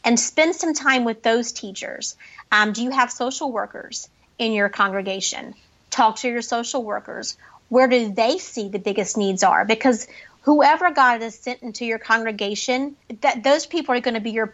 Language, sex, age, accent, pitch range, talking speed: English, female, 30-49, American, 210-250 Hz, 185 wpm